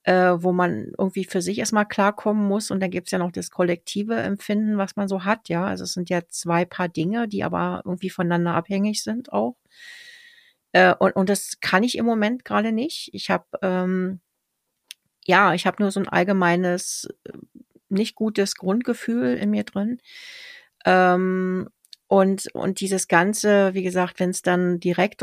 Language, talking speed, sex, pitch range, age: German, 180 wpm, female, 180-210 Hz, 40-59